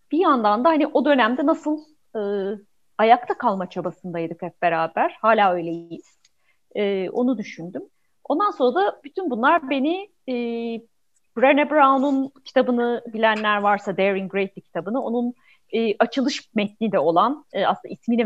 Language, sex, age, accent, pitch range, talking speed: Turkish, female, 30-49, native, 195-265 Hz, 140 wpm